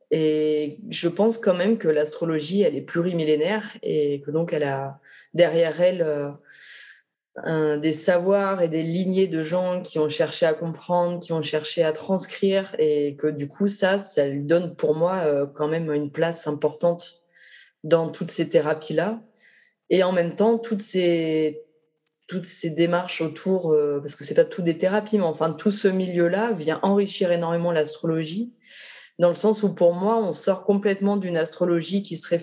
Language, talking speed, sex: French, 180 wpm, female